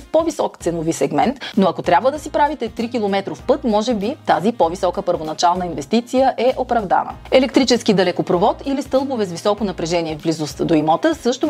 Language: Bulgarian